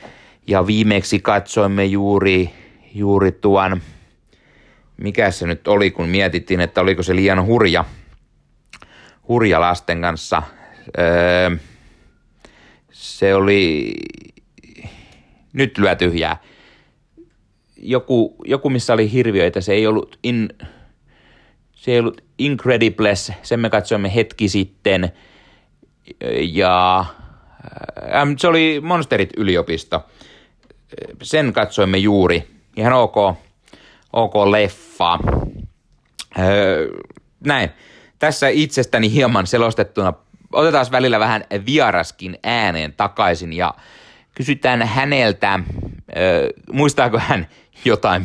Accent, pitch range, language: native, 90-120 Hz, Finnish